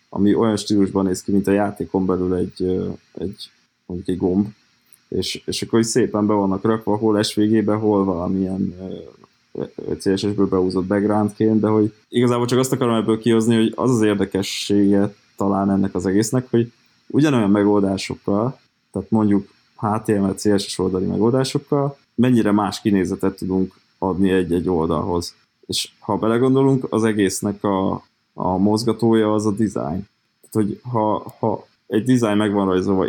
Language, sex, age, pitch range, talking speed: Hungarian, male, 20-39, 95-110 Hz, 145 wpm